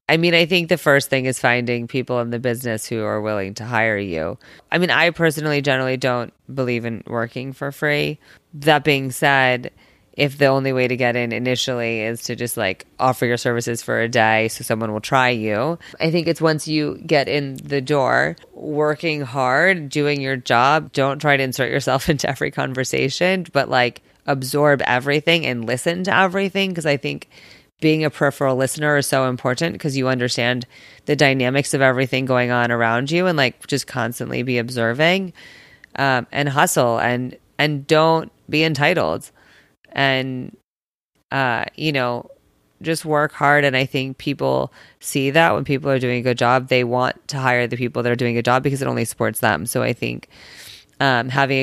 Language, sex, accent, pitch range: English, female, American, 120-145 Hz